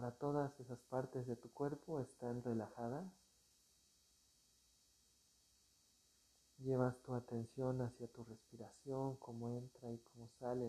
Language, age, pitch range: Spanish, 50-69, 100-125 Hz